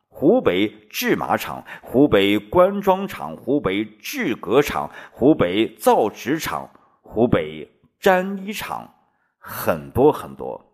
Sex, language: male, Chinese